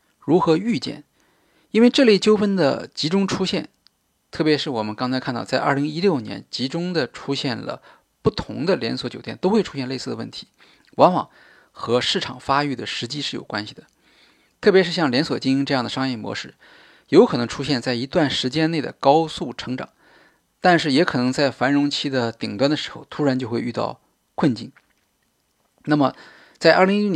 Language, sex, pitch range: Chinese, male, 130-175 Hz